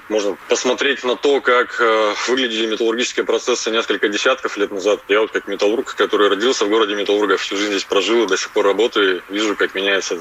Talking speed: 195 wpm